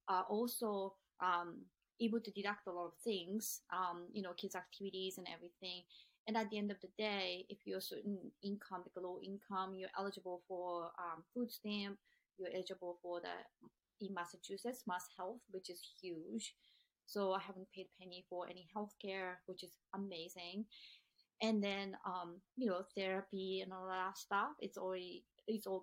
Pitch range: 180-210 Hz